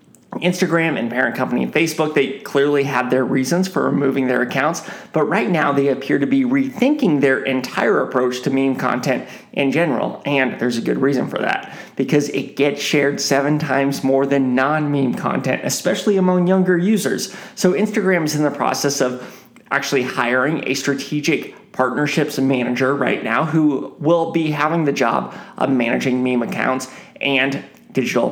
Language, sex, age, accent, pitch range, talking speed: English, male, 30-49, American, 135-185 Hz, 165 wpm